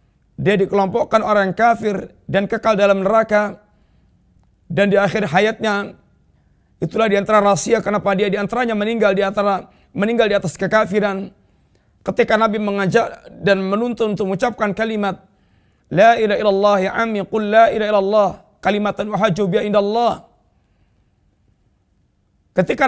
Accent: native